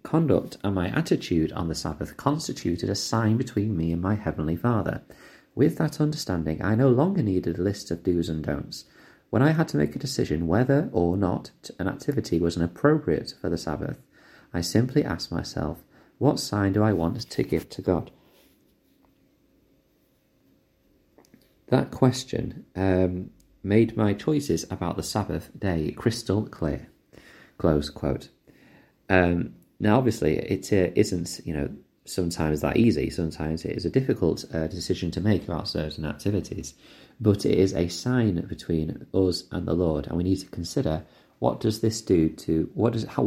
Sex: male